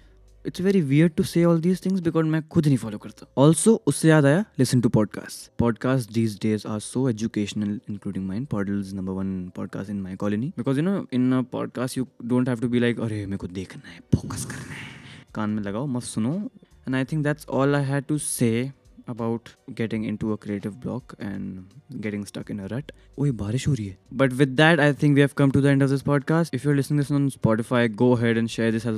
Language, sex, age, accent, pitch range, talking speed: Hindi, male, 20-39, native, 110-140 Hz, 160 wpm